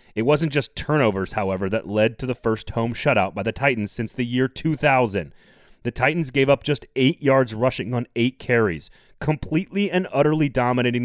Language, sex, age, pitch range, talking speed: English, male, 30-49, 110-145 Hz, 185 wpm